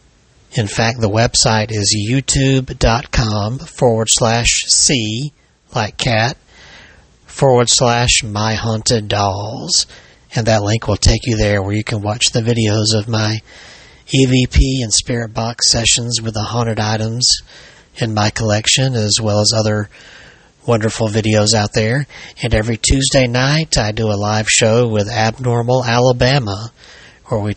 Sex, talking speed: male, 140 wpm